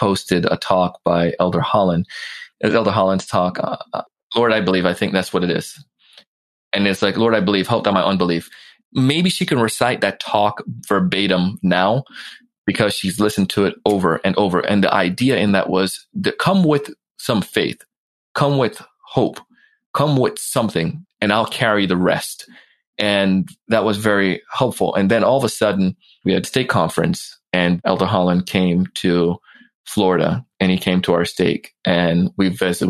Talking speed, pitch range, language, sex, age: 180 wpm, 95-140 Hz, English, male, 20-39